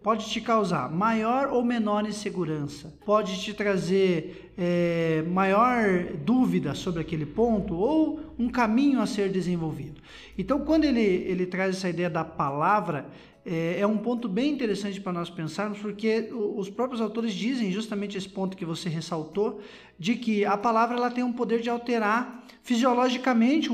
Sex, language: male, Portuguese